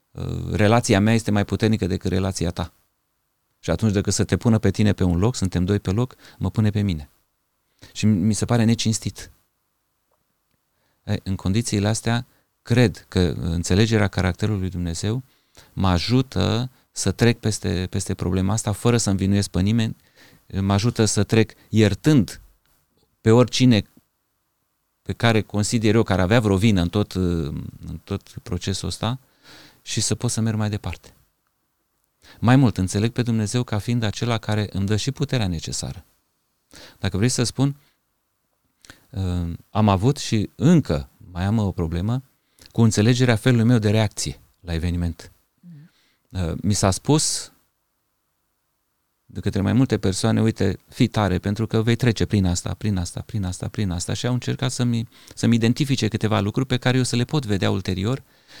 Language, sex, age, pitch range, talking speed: Romanian, male, 30-49, 95-120 Hz, 160 wpm